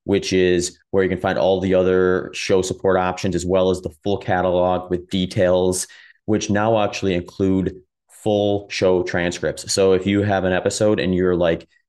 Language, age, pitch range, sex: English, 30-49, 90-115 Hz, male